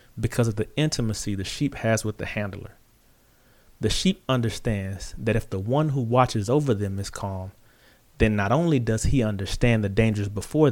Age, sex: 30-49, male